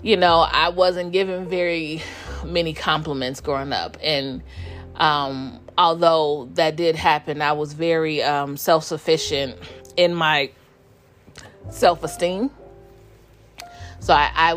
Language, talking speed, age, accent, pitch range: English, 110 wpm, 30-49, American, 125-160 Hz